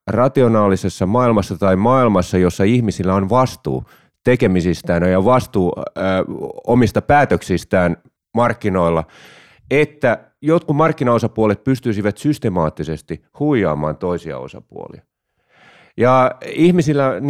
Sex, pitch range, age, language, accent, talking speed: male, 105-150 Hz, 30-49, Finnish, native, 80 wpm